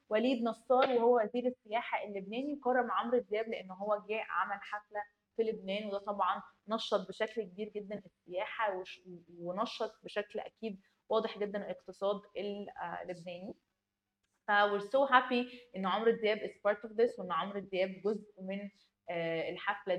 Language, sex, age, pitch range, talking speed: Arabic, female, 20-39, 195-240 Hz, 125 wpm